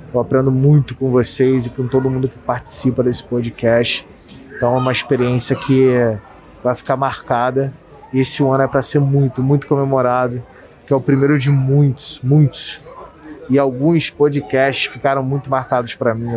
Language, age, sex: Portuguese, 20-39, male